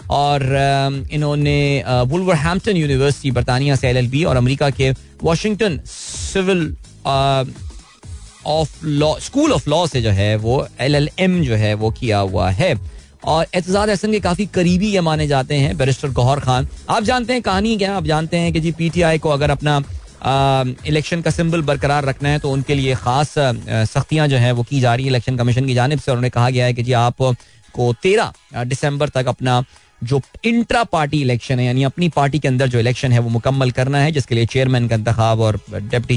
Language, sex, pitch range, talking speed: Hindi, male, 125-160 Hz, 185 wpm